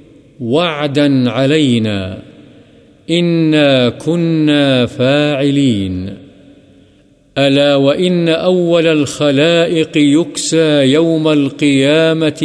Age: 50-69